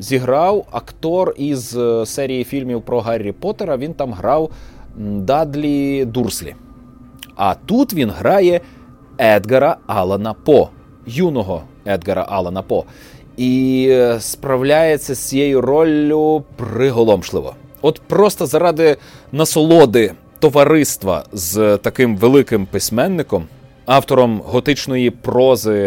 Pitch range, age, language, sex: 110-150 Hz, 30-49, Ukrainian, male